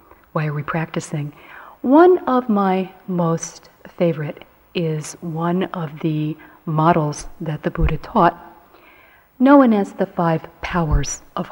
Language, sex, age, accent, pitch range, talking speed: English, female, 40-59, American, 155-185 Hz, 125 wpm